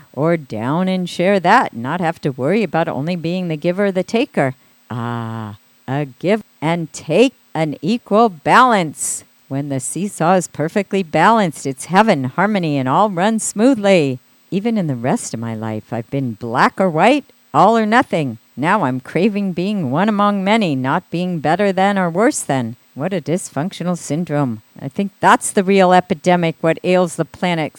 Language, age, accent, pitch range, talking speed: English, 50-69, American, 140-195 Hz, 175 wpm